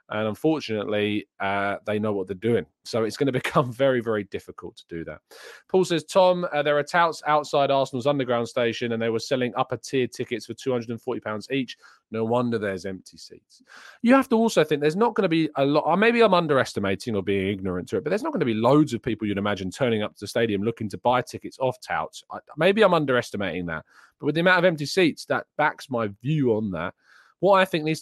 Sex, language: male, English